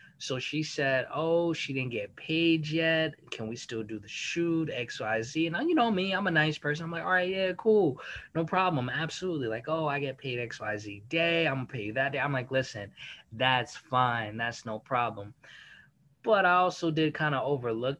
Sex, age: male, 20-39